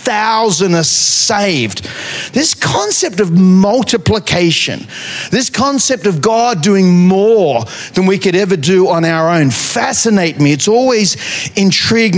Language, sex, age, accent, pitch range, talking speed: English, male, 40-59, Australian, 175-235 Hz, 130 wpm